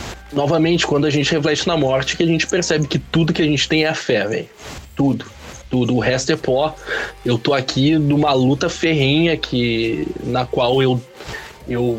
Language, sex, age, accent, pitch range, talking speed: Portuguese, male, 20-39, Brazilian, 120-155 Hz, 190 wpm